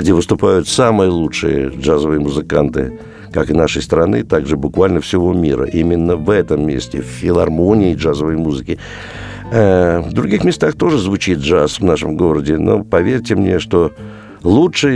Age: 60-79